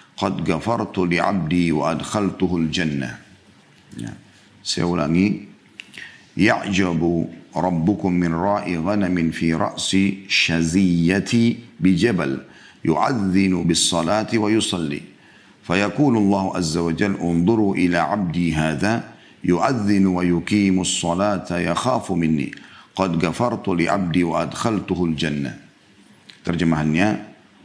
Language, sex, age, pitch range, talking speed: Indonesian, male, 50-69, 85-100 Hz, 75 wpm